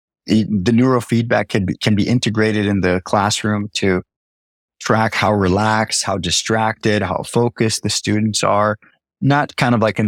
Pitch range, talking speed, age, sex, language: 95-110 Hz, 160 wpm, 20-39, male, English